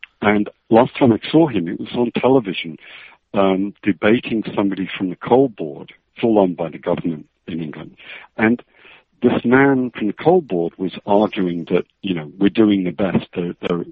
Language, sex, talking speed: English, male, 175 wpm